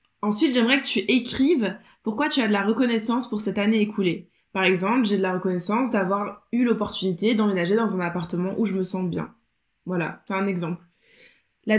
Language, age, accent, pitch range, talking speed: French, 20-39, French, 200-250 Hz, 195 wpm